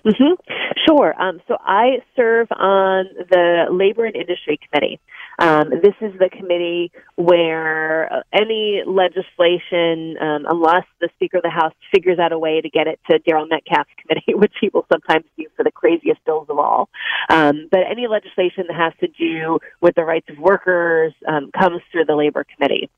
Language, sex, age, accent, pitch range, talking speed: English, female, 30-49, American, 160-220 Hz, 175 wpm